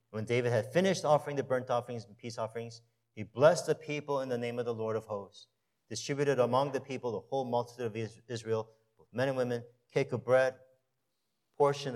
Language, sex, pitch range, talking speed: English, male, 115-150 Hz, 195 wpm